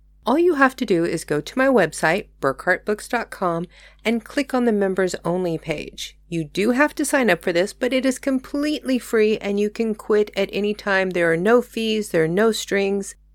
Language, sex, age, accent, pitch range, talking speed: English, female, 40-59, American, 170-230 Hz, 205 wpm